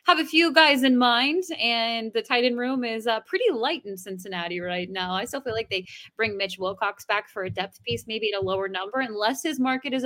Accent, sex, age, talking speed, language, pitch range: American, female, 20-39, 245 wpm, English, 200-275 Hz